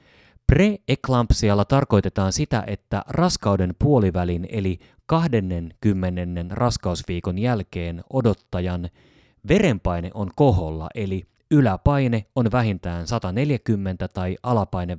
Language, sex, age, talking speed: Finnish, male, 30-49, 85 wpm